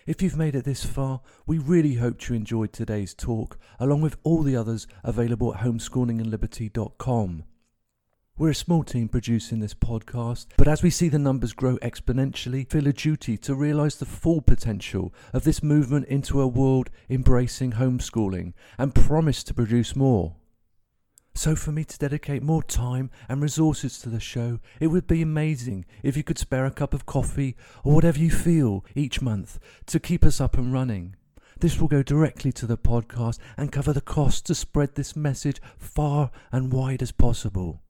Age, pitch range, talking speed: 40-59, 115-145 Hz, 180 wpm